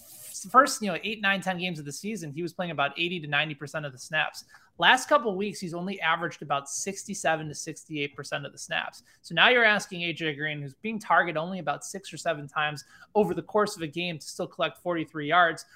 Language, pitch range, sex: English, 145-190 Hz, male